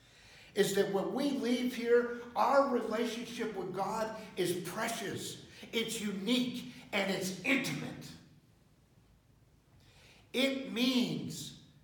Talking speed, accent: 95 wpm, American